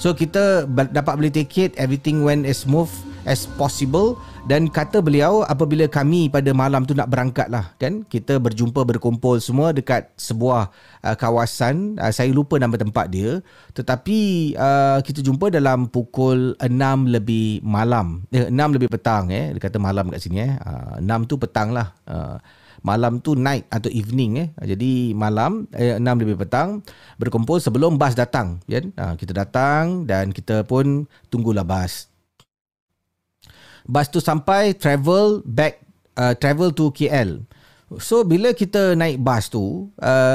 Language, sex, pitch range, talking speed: Malay, male, 110-150 Hz, 155 wpm